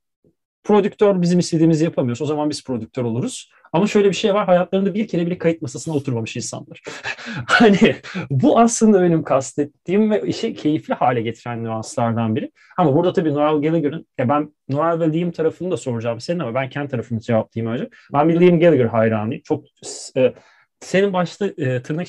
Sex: male